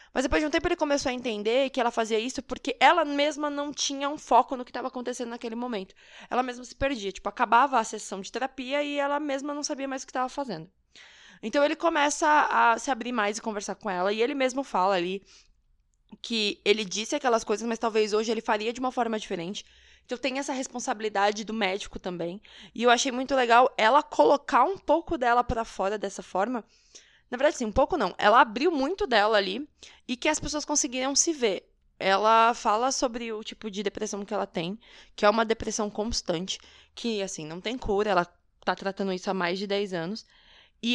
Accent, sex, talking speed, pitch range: Brazilian, female, 215 wpm, 205-265 Hz